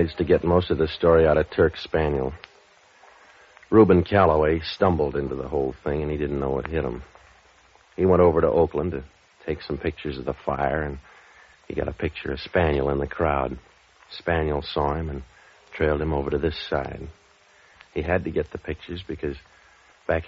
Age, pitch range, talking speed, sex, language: 60-79, 70-85 Hz, 190 wpm, male, English